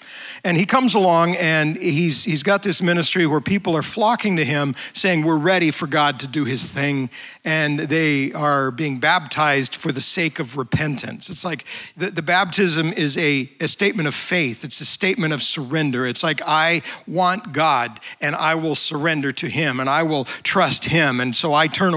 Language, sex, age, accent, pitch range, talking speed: English, male, 50-69, American, 140-175 Hz, 195 wpm